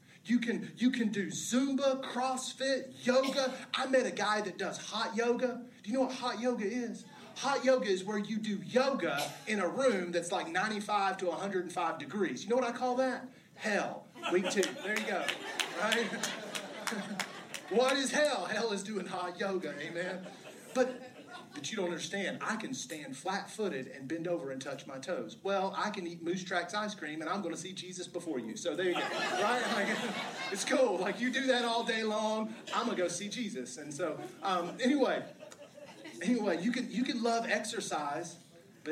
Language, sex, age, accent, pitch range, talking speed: English, male, 30-49, American, 180-250 Hz, 195 wpm